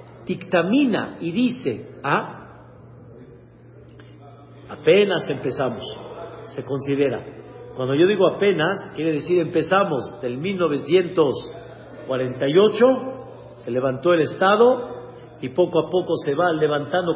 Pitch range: 140-180 Hz